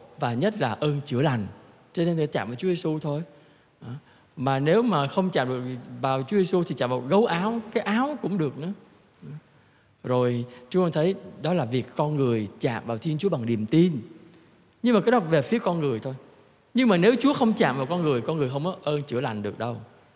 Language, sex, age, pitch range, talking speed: Vietnamese, male, 20-39, 120-165 Hz, 225 wpm